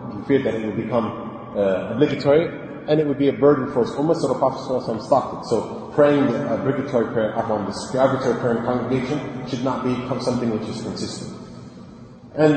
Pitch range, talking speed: 115-140 Hz, 195 wpm